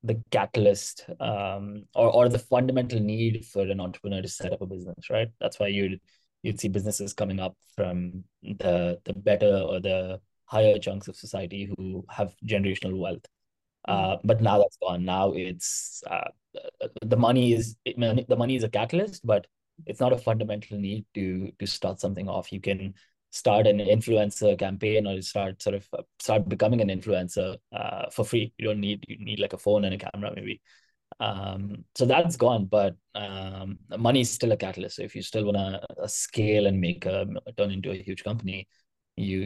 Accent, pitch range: Indian, 95-115 Hz